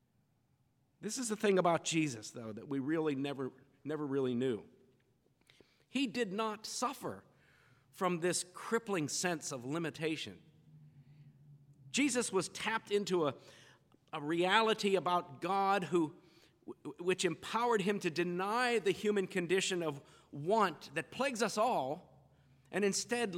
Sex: male